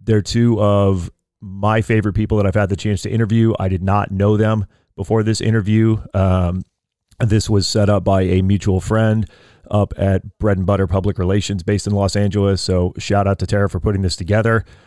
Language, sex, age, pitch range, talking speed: English, male, 30-49, 95-110 Hz, 200 wpm